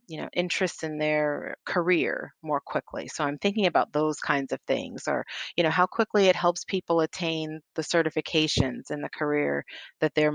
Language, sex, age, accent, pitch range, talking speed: English, female, 30-49, American, 150-170 Hz, 185 wpm